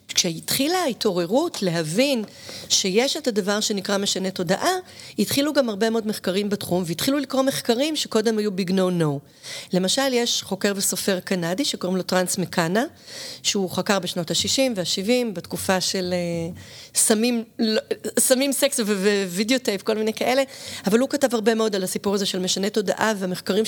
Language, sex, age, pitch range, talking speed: Hebrew, female, 30-49, 185-240 Hz, 150 wpm